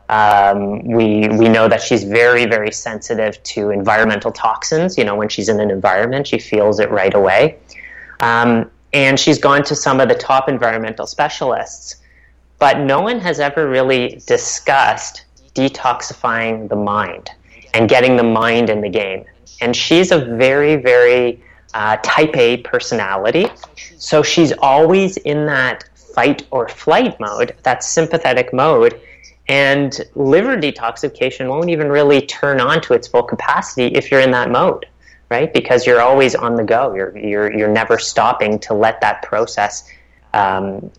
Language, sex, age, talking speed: English, female, 30-49, 155 wpm